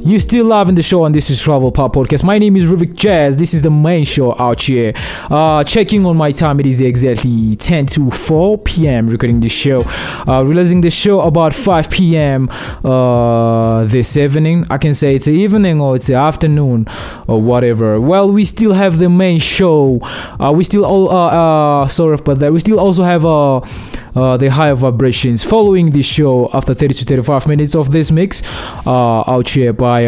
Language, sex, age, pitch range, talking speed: English, male, 20-39, 125-165 Hz, 200 wpm